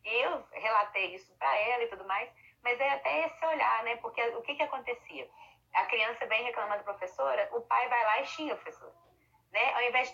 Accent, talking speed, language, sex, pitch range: Brazilian, 220 wpm, Portuguese, female, 205-275 Hz